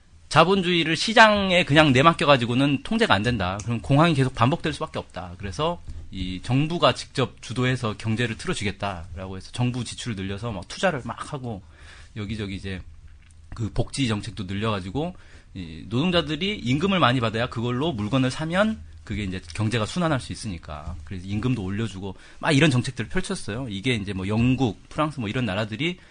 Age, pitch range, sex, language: 30-49, 95-135 Hz, male, Korean